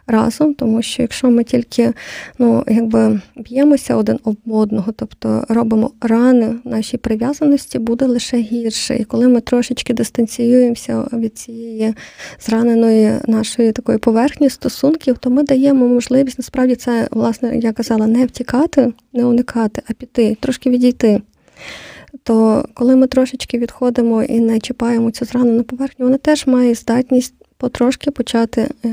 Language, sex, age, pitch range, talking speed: Ukrainian, female, 20-39, 225-250 Hz, 140 wpm